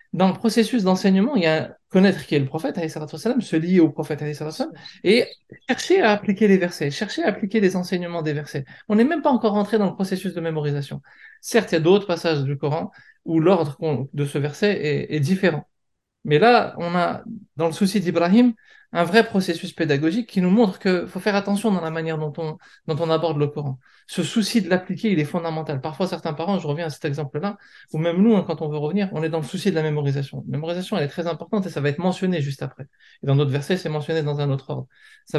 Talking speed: 235 wpm